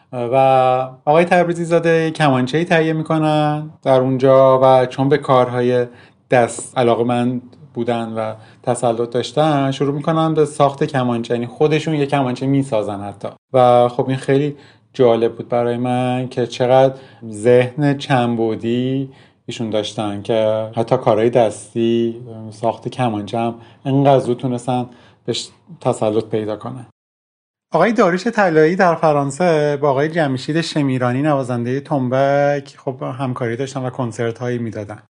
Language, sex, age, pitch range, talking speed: Persian, male, 30-49, 120-140 Hz, 130 wpm